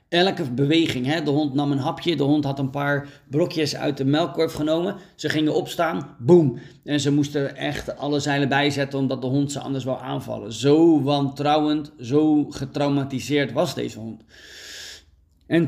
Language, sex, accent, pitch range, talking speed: Dutch, male, Dutch, 130-160 Hz, 170 wpm